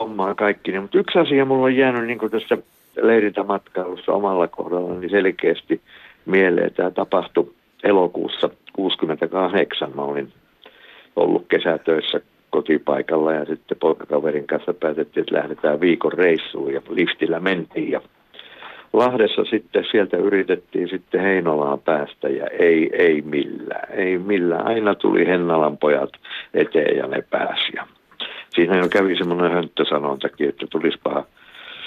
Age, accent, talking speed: 50-69, native, 120 wpm